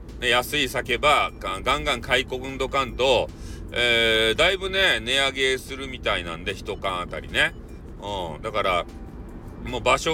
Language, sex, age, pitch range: Japanese, male, 40-59, 100-135 Hz